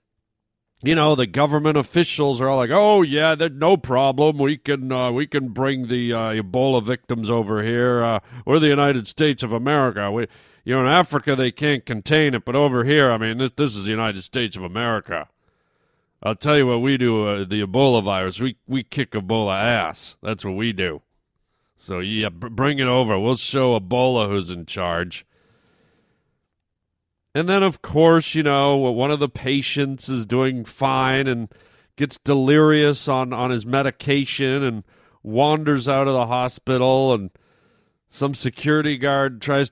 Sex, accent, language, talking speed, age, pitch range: male, American, English, 175 wpm, 40-59, 115-145 Hz